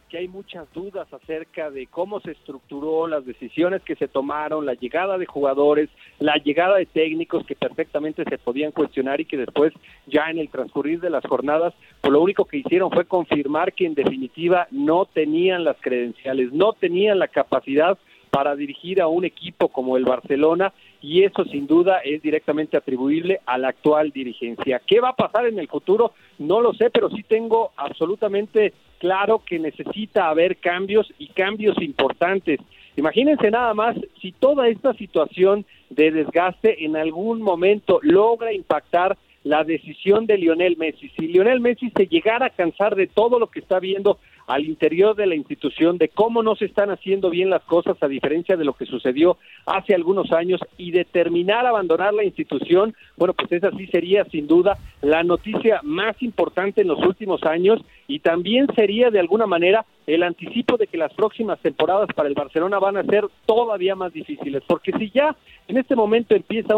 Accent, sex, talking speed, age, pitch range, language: Mexican, male, 180 wpm, 50-69, 155-215 Hz, Spanish